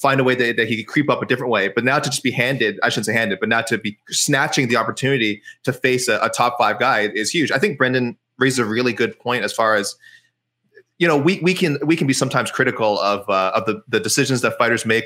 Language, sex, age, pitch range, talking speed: English, male, 20-39, 115-145 Hz, 270 wpm